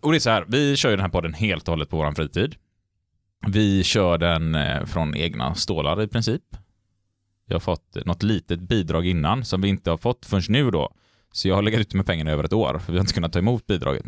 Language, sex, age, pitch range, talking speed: Swedish, male, 20-39, 90-115 Hz, 245 wpm